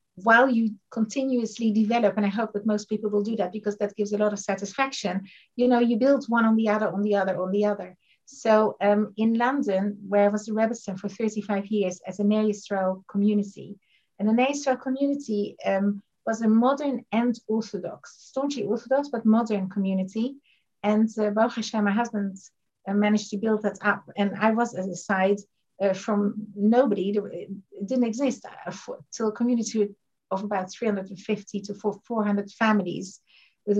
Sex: female